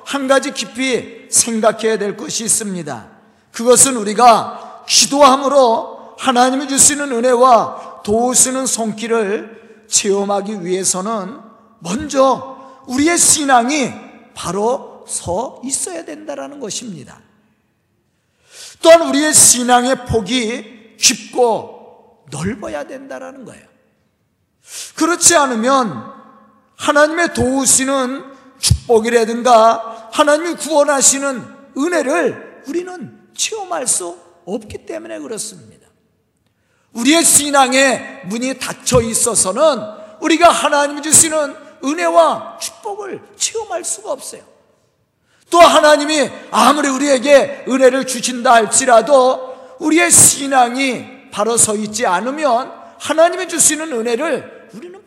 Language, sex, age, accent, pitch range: Korean, male, 40-59, native, 230-295 Hz